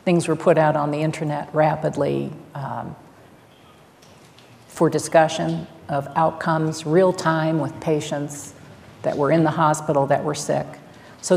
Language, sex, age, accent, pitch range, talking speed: English, female, 50-69, American, 155-175 Hz, 135 wpm